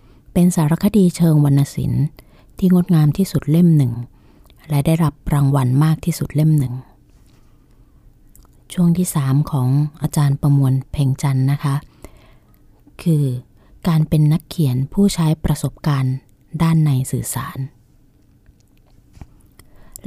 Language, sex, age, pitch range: Thai, female, 30-49, 135-165 Hz